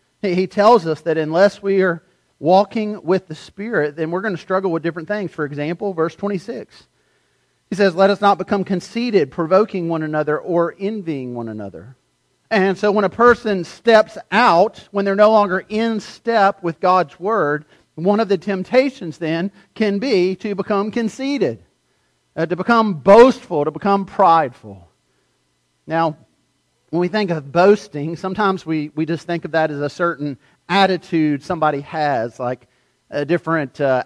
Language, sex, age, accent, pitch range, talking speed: English, male, 40-59, American, 150-190 Hz, 160 wpm